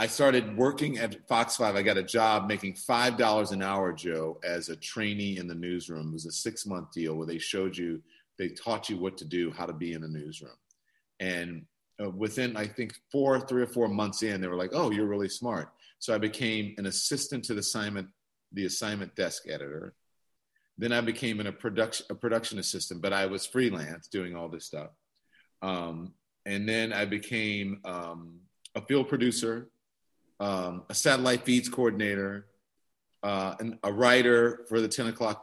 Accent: American